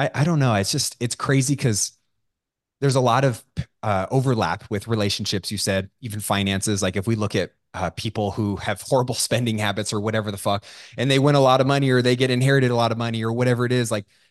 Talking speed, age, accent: 240 wpm, 20-39, American